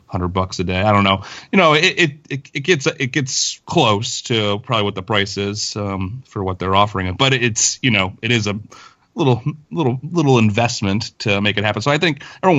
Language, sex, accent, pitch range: English, male, American, 100-125 Hz